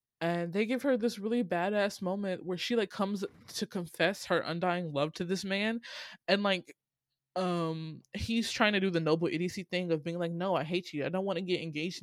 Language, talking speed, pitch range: English, 215 wpm, 160-205 Hz